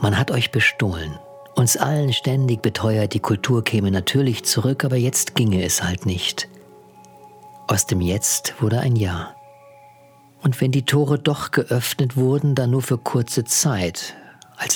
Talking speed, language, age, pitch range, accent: 155 wpm, German, 50-69, 100-135 Hz, German